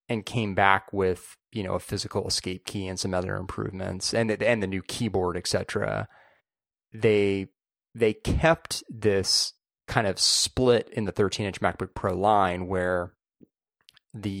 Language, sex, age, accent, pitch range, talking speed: English, male, 30-49, American, 95-115 Hz, 150 wpm